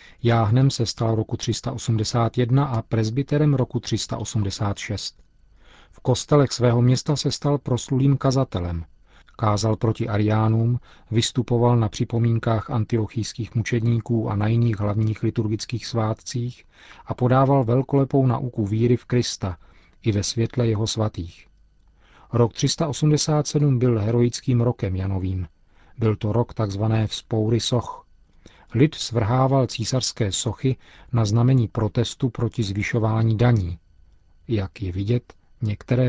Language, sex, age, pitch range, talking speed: Czech, male, 40-59, 105-125 Hz, 115 wpm